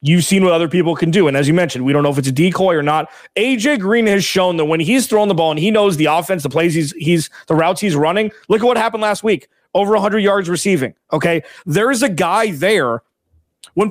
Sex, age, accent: male, 30-49, American